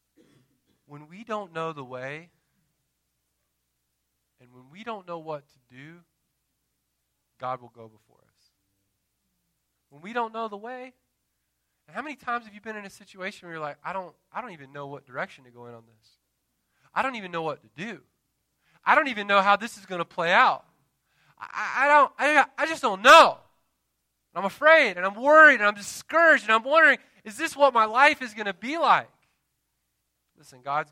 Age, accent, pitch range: 20-39, American, 125-180 Hz